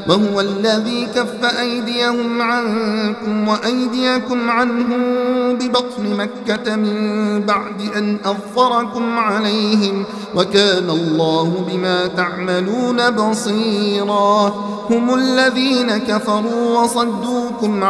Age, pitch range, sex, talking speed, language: 50-69, 200-240 Hz, male, 75 wpm, Arabic